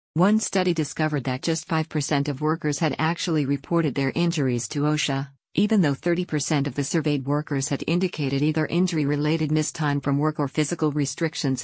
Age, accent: 50-69, American